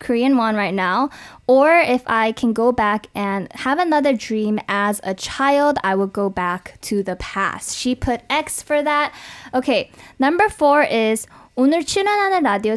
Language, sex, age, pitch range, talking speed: English, female, 10-29, 220-320 Hz, 170 wpm